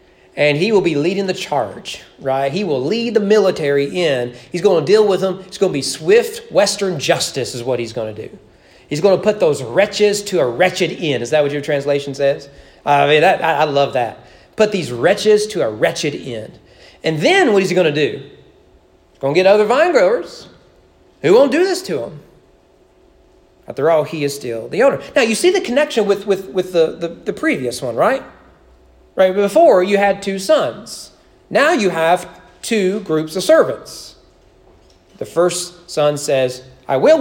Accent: American